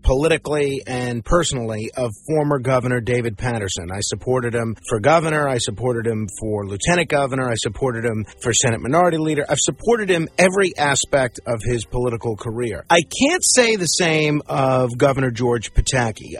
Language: English